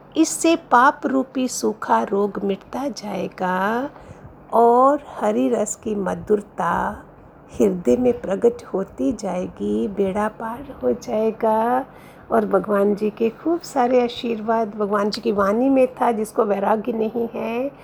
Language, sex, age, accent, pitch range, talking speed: Hindi, female, 50-69, native, 215-275 Hz, 130 wpm